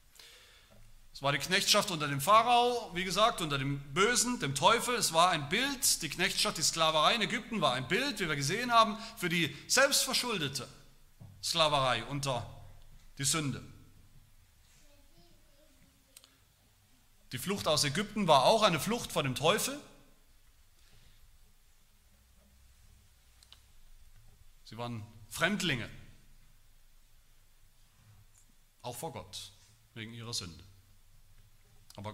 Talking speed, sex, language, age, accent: 110 wpm, male, German, 40-59, German